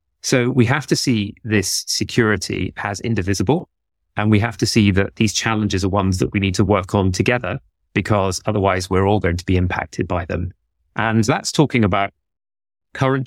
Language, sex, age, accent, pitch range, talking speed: English, male, 30-49, British, 95-125 Hz, 185 wpm